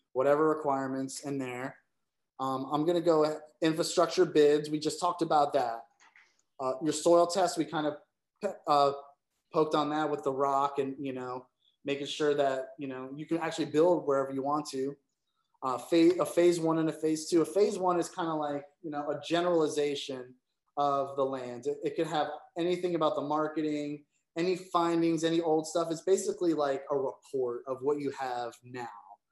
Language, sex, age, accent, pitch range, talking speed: English, male, 20-39, American, 135-165 Hz, 190 wpm